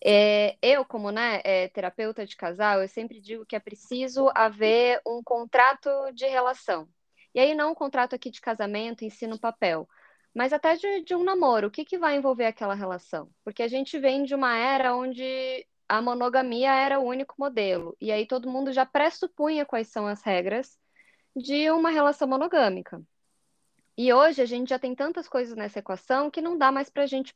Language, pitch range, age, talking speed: Portuguese, 215-275 Hz, 20-39, 190 wpm